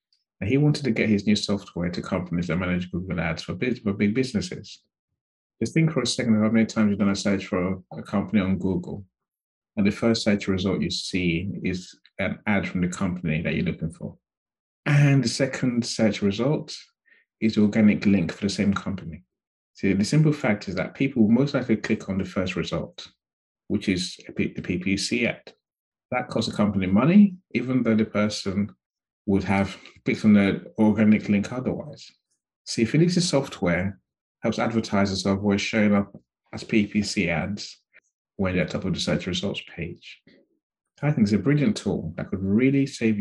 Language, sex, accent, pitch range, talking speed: English, male, British, 95-115 Hz, 185 wpm